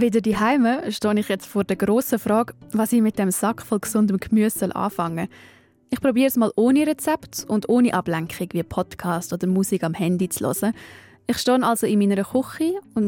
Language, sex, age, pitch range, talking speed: German, female, 10-29, 195-235 Hz, 195 wpm